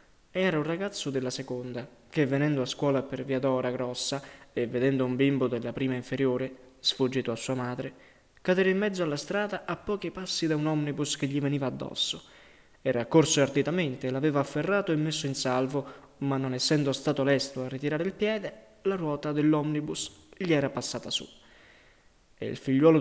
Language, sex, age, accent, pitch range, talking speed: Italian, male, 20-39, native, 130-150 Hz, 175 wpm